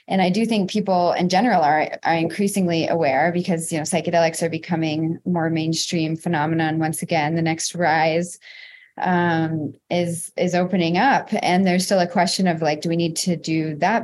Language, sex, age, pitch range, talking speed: English, female, 20-39, 170-210 Hz, 185 wpm